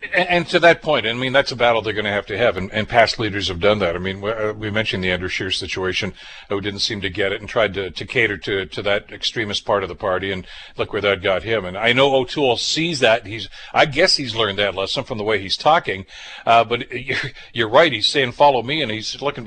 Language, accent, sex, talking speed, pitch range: English, American, male, 260 wpm, 105-135 Hz